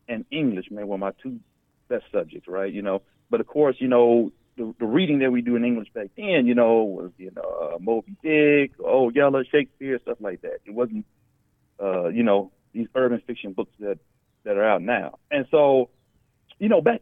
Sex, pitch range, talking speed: male, 110-145 Hz, 210 wpm